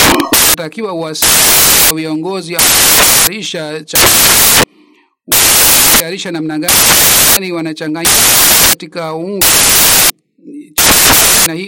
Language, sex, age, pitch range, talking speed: Swahili, male, 50-69, 165-210 Hz, 55 wpm